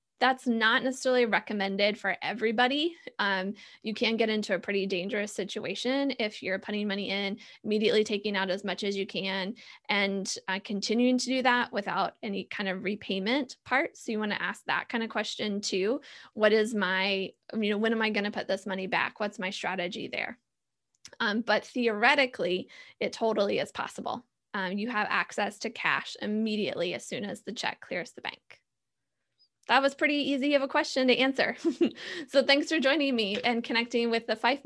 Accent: American